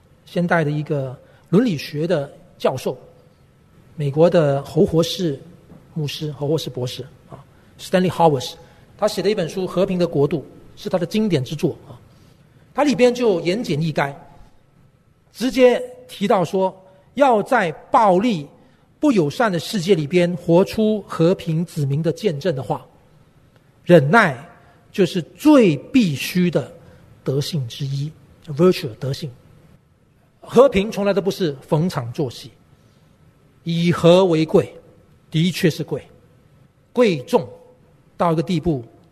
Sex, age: male, 40-59